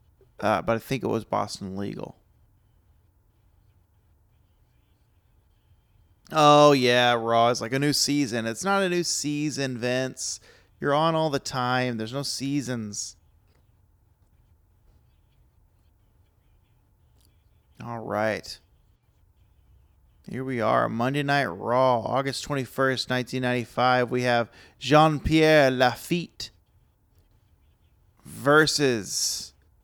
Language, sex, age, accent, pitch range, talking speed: English, male, 30-49, American, 100-125 Hz, 95 wpm